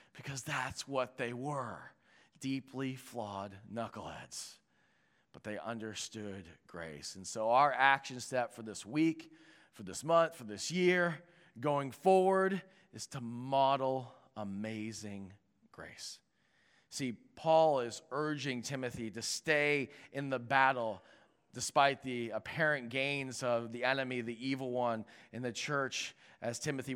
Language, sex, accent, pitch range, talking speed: English, male, American, 115-150 Hz, 130 wpm